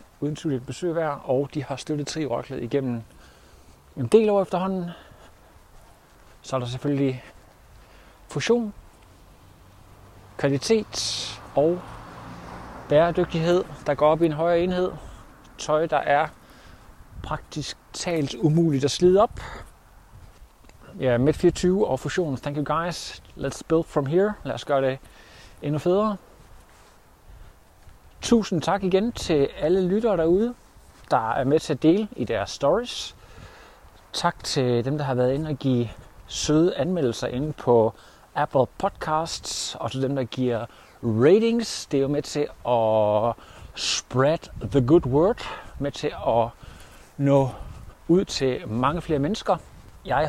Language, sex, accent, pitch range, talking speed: Danish, male, native, 110-165 Hz, 135 wpm